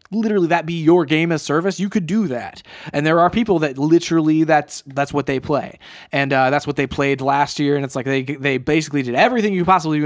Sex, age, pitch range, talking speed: male, 20-39, 135-170 Hz, 245 wpm